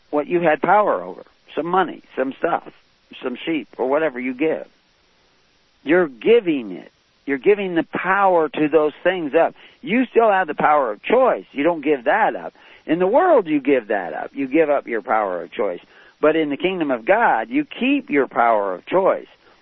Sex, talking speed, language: male, 195 wpm, English